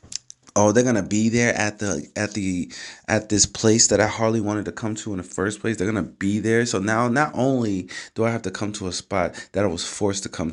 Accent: American